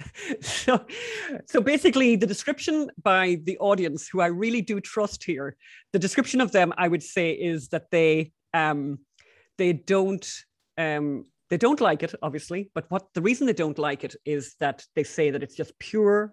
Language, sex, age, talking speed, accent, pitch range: English, female, 30-49, 180 wpm, Irish, 150-190 Hz